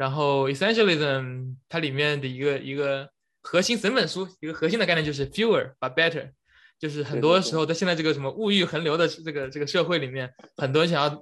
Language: English